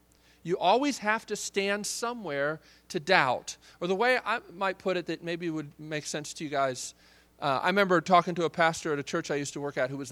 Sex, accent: male, American